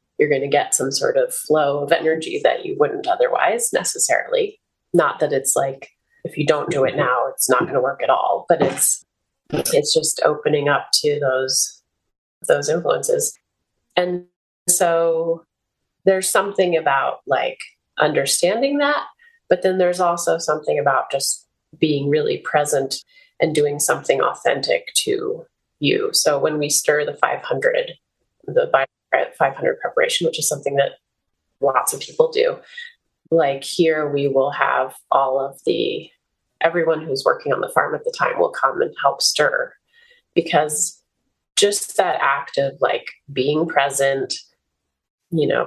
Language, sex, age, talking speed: English, female, 30-49, 155 wpm